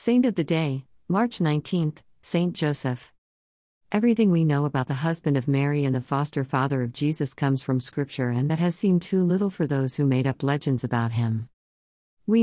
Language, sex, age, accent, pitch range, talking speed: Malayalam, female, 50-69, American, 135-165 Hz, 195 wpm